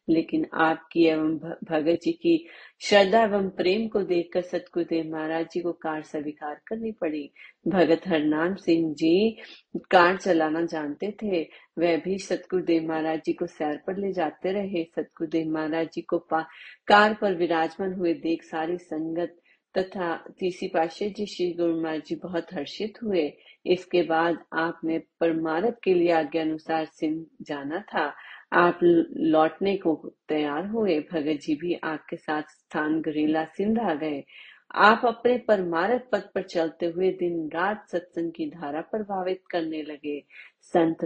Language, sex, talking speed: Hindi, female, 145 wpm